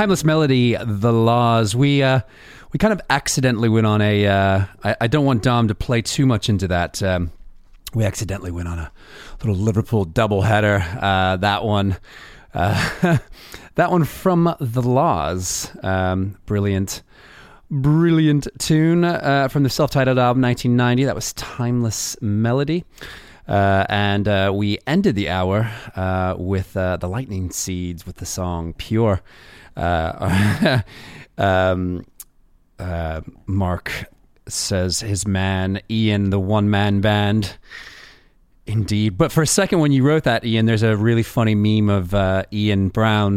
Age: 30-49